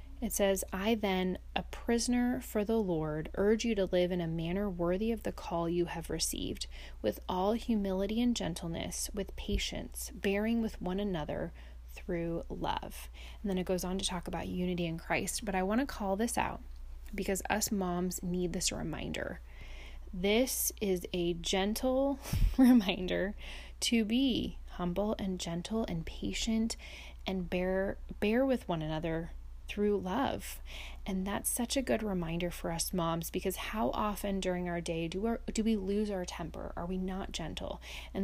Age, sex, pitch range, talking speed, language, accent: 30-49, female, 165-205 Hz, 165 wpm, English, American